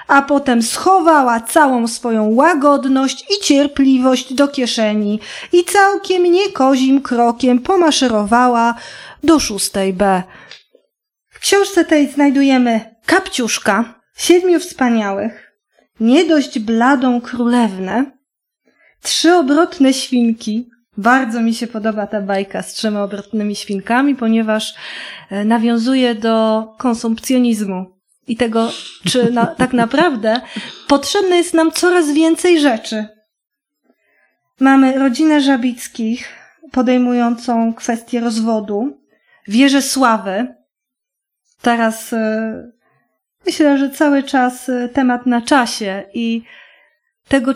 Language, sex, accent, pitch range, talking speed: Polish, female, native, 230-285 Hz, 95 wpm